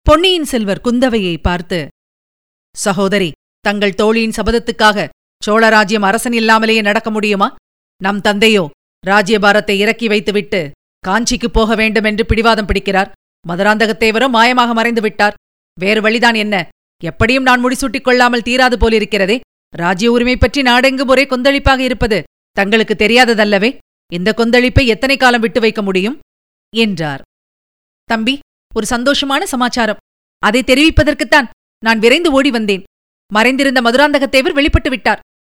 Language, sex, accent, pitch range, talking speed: Tamil, female, native, 205-260 Hz, 110 wpm